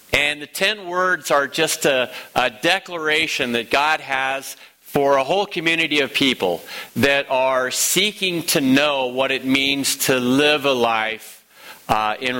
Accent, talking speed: American, 155 wpm